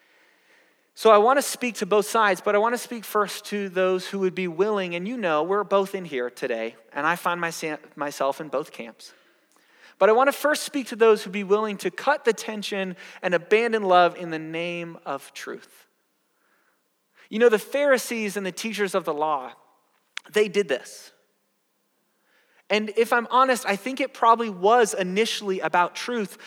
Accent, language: American, English